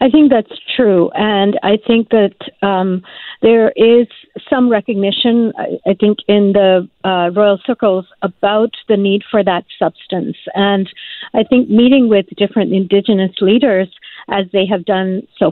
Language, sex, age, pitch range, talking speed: English, female, 50-69, 195-230 Hz, 155 wpm